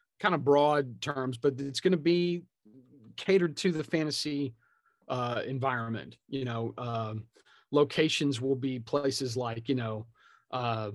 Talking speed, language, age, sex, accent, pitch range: 150 wpm, English, 40-59, male, American, 115-145 Hz